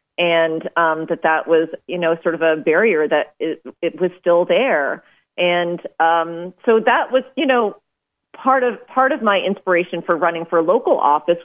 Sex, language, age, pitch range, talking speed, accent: female, English, 30-49, 160-195 Hz, 185 wpm, American